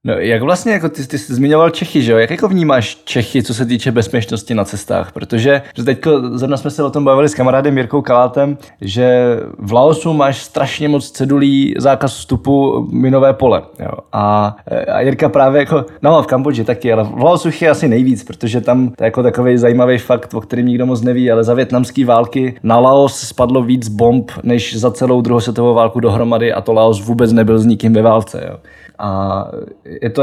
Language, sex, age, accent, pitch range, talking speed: Czech, male, 20-39, native, 115-135 Hz, 200 wpm